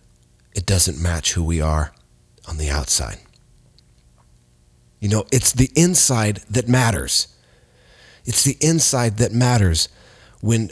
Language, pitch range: English, 100-135 Hz